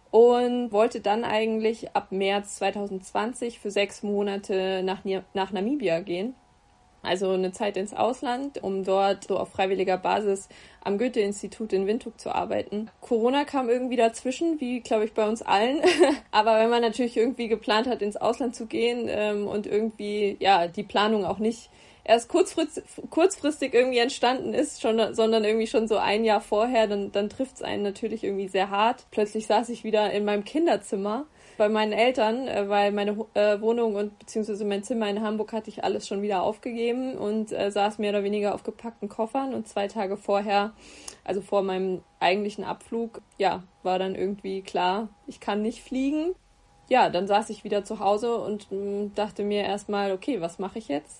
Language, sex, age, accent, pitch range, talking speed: English, female, 20-39, German, 200-230 Hz, 180 wpm